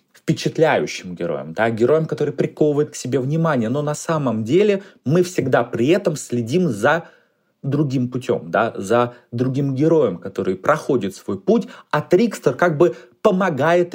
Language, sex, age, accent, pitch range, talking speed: Russian, male, 30-49, native, 125-175 Hz, 145 wpm